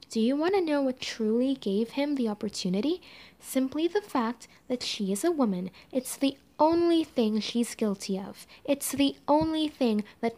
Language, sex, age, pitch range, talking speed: English, female, 10-29, 220-265 Hz, 180 wpm